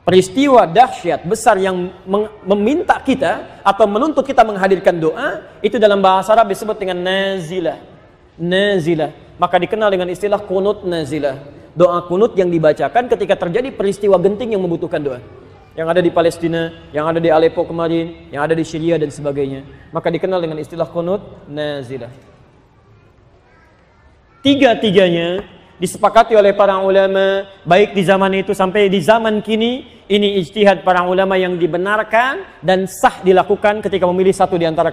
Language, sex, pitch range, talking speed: Indonesian, male, 165-210 Hz, 145 wpm